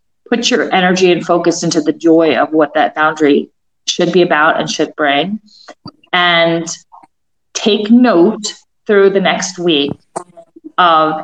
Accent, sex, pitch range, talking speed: American, female, 160-215 Hz, 140 wpm